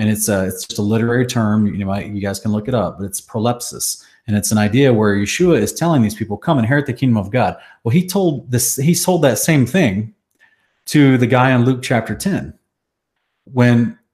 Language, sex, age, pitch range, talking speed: English, male, 30-49, 105-140 Hz, 225 wpm